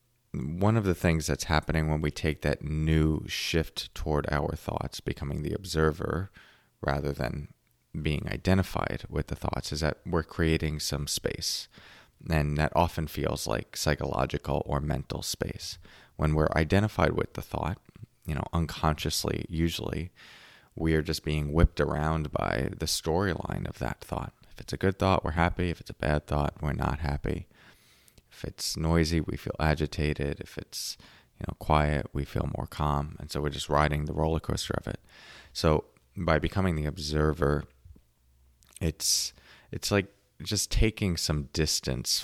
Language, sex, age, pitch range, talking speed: English, male, 30-49, 75-90 Hz, 160 wpm